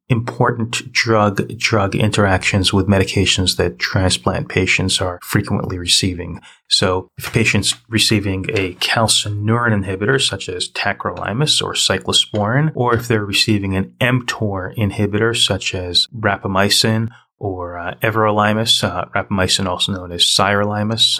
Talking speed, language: 125 wpm, English